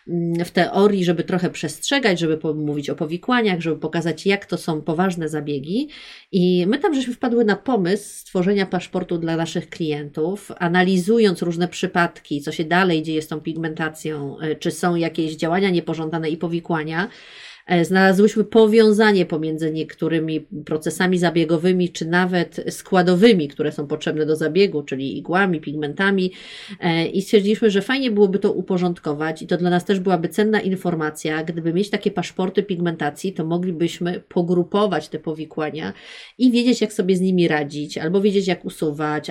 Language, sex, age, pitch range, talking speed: Polish, female, 30-49, 160-200 Hz, 150 wpm